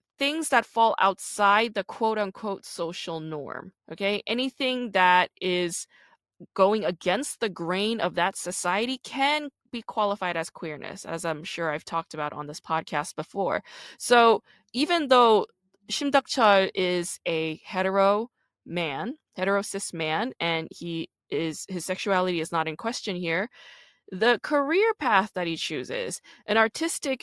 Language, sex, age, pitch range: English, female, 20-39, 175-245 Hz